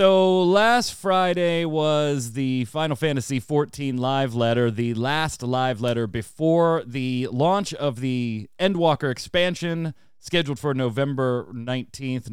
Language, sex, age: English, male, 30-49